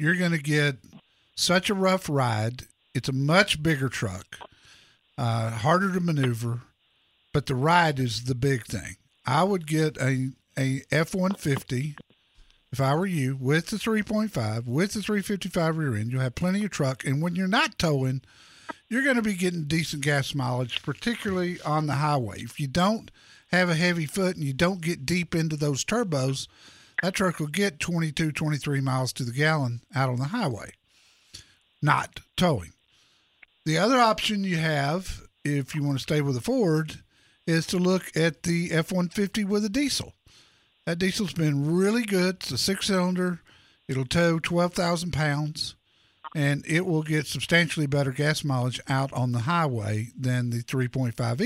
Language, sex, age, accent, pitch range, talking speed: English, male, 50-69, American, 135-180 Hz, 170 wpm